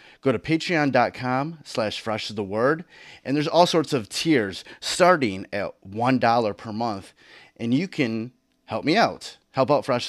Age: 30-49